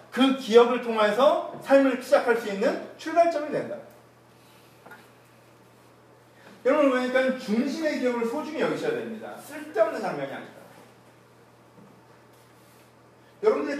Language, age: Korean, 40-59